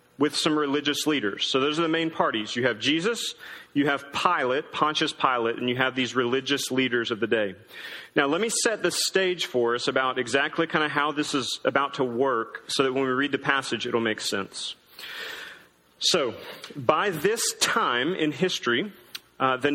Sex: male